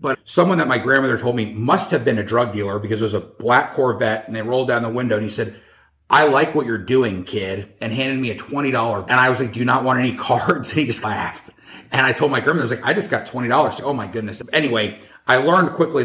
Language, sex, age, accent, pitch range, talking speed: English, male, 30-49, American, 110-130 Hz, 275 wpm